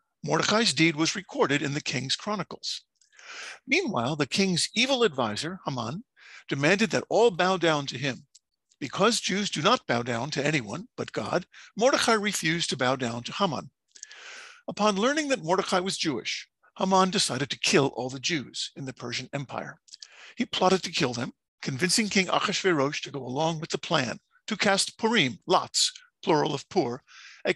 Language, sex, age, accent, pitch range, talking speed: English, male, 50-69, American, 145-215 Hz, 170 wpm